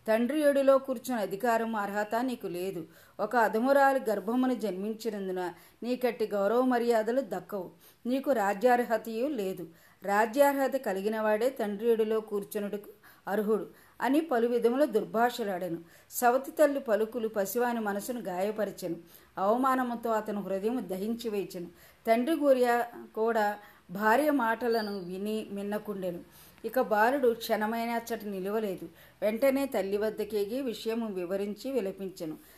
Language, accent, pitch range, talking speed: Telugu, native, 195-245 Hz, 105 wpm